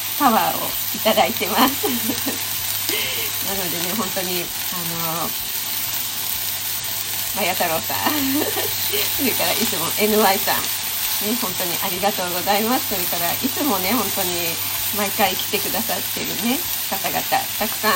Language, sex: Japanese, female